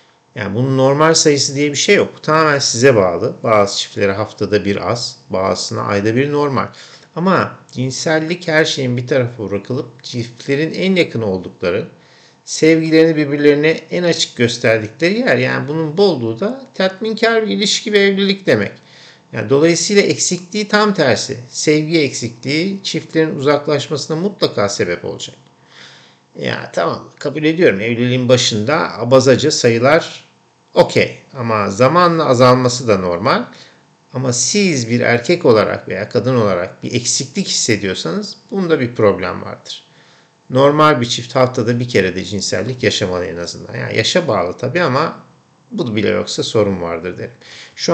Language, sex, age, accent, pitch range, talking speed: Turkish, male, 50-69, native, 120-160 Hz, 145 wpm